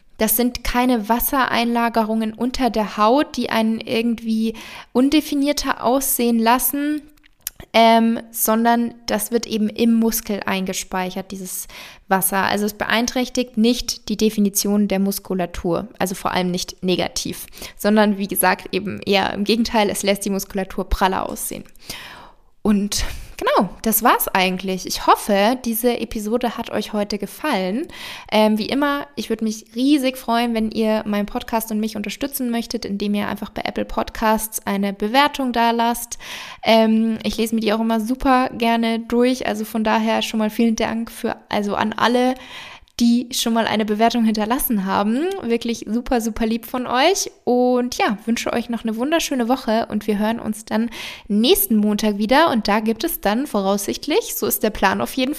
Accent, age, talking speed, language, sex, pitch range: German, 20-39, 165 wpm, German, female, 210-245 Hz